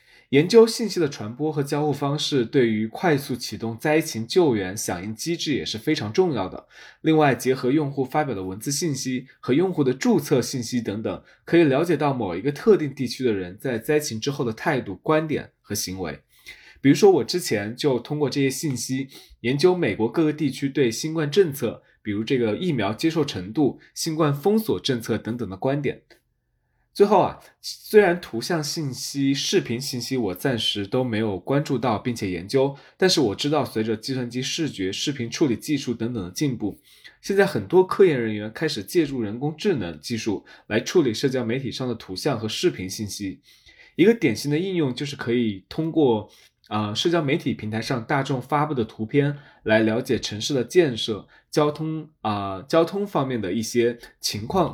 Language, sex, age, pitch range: Chinese, male, 20-39, 110-155 Hz